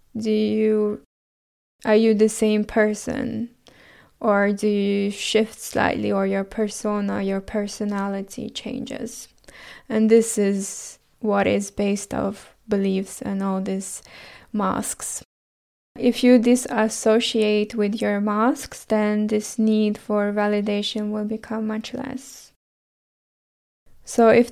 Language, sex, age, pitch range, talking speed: English, female, 10-29, 205-225 Hz, 115 wpm